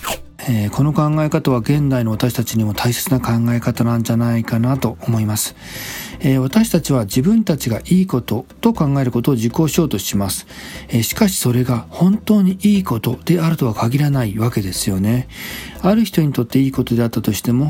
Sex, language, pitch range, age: male, Japanese, 120-170 Hz, 40-59